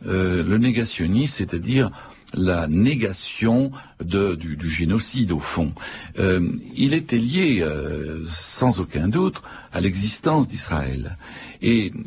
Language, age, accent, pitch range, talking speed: French, 60-79, French, 85-125 Hz, 115 wpm